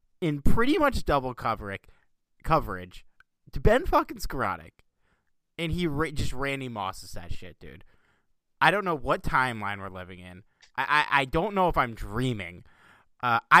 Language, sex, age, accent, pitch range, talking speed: English, male, 30-49, American, 100-140 Hz, 160 wpm